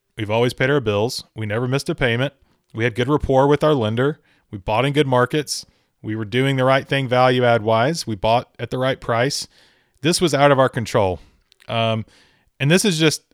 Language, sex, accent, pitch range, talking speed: English, male, American, 110-135 Hz, 215 wpm